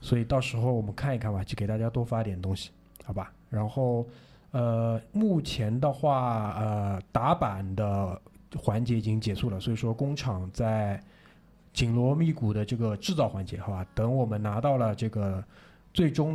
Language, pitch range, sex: Chinese, 105-130 Hz, male